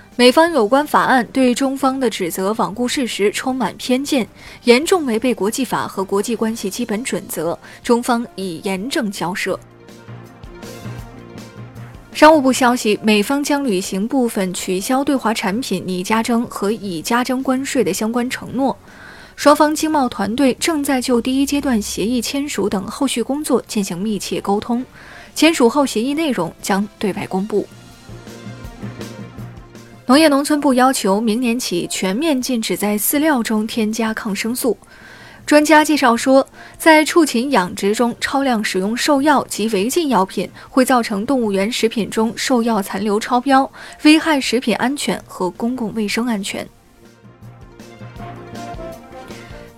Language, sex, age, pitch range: Chinese, female, 20-39, 190-260 Hz